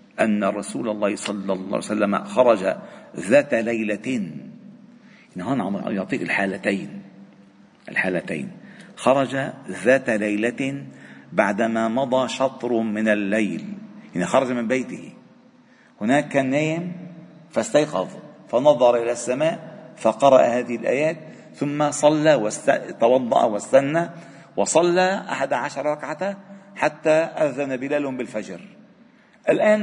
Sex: male